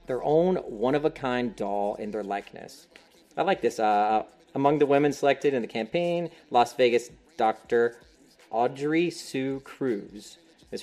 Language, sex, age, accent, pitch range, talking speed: English, male, 30-49, American, 115-150 Hz, 140 wpm